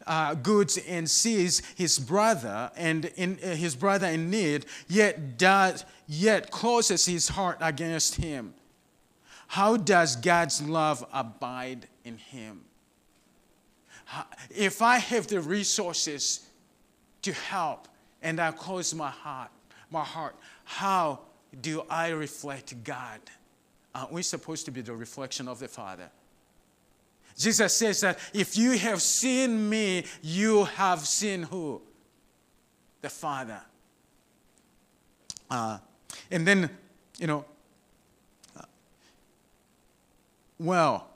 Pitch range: 150-195 Hz